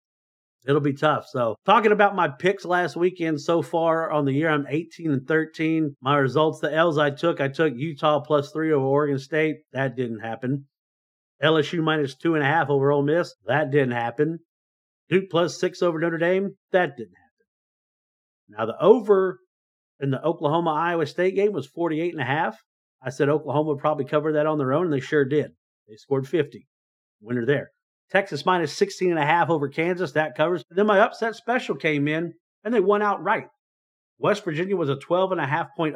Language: English